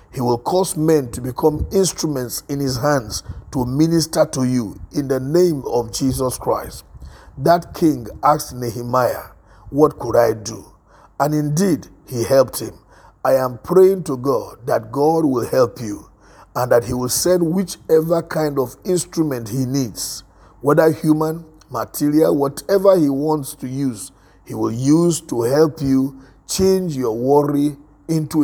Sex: male